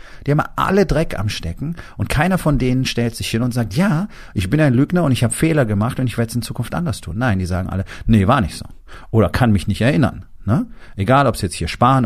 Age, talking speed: 40-59, 265 wpm